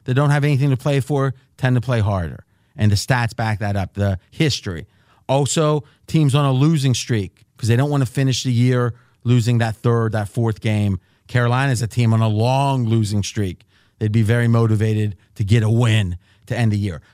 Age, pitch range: 30-49, 110-140 Hz